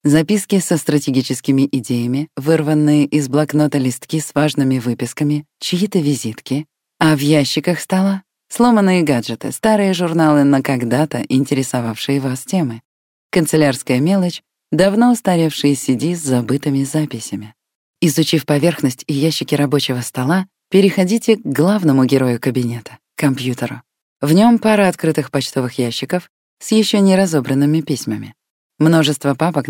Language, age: Russian, 20-39